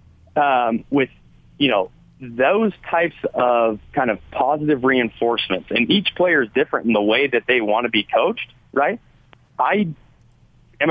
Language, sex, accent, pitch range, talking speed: English, male, American, 115-155 Hz, 155 wpm